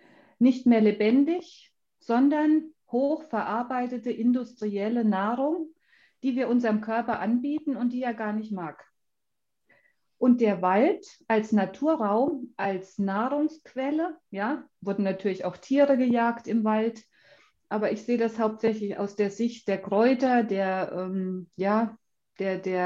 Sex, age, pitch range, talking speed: female, 40-59, 205-270 Hz, 125 wpm